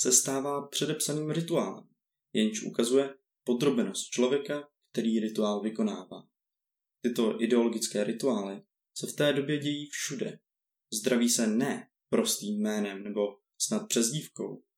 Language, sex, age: Czech, male, 20-39